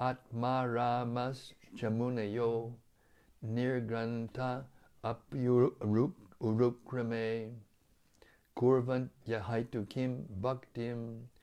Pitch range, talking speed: 110-130 Hz, 60 wpm